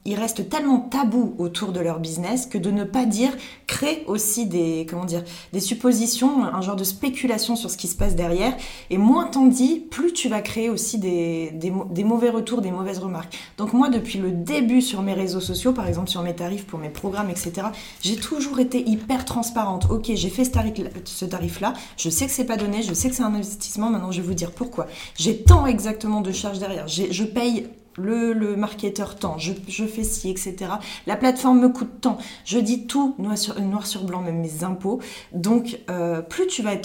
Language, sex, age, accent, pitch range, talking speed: French, female, 20-39, French, 180-235 Hz, 215 wpm